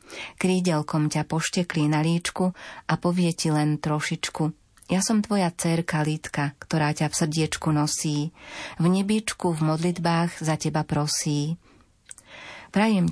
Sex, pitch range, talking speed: female, 155-175 Hz, 130 wpm